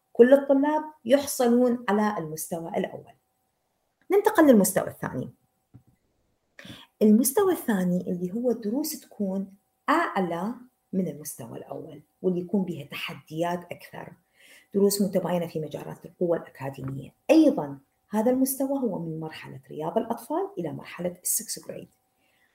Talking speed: 110 wpm